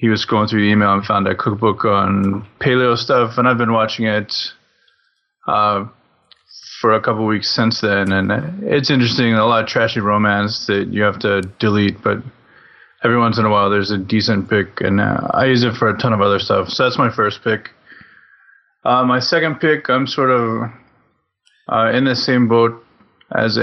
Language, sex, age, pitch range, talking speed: English, male, 20-39, 105-125 Hz, 200 wpm